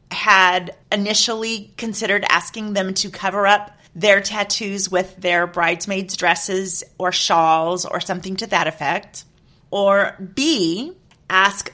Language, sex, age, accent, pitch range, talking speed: English, female, 30-49, American, 185-245 Hz, 125 wpm